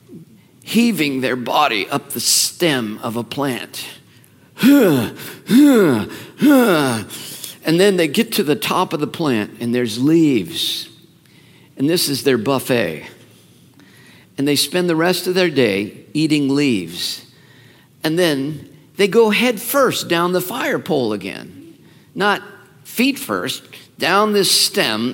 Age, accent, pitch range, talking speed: 50-69, American, 130-170 Hz, 130 wpm